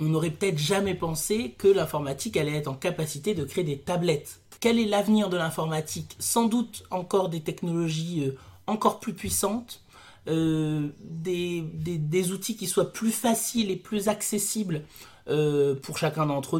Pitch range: 160-210 Hz